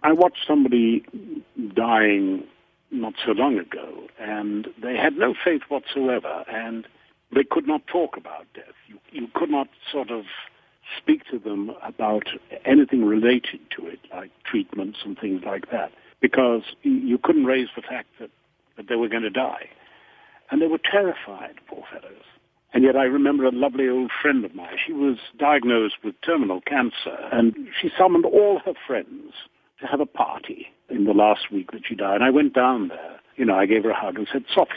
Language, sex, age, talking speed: English, male, 60-79, 185 wpm